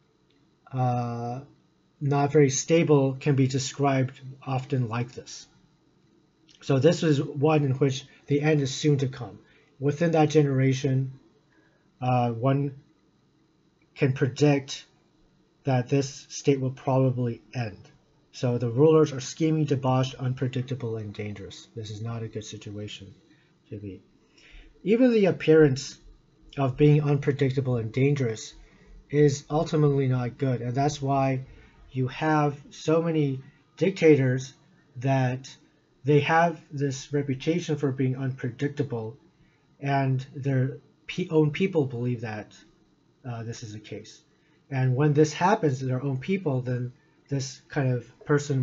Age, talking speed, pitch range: 40-59, 130 wpm, 125-155 Hz